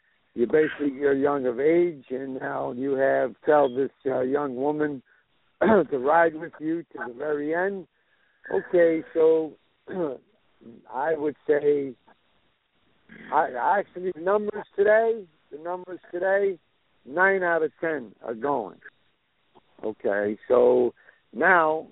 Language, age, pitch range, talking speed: English, 60-79, 135-170 Hz, 120 wpm